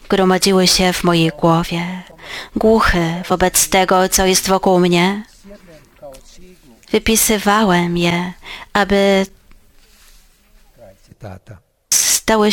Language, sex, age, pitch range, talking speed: Polish, female, 30-49, 175-210 Hz, 75 wpm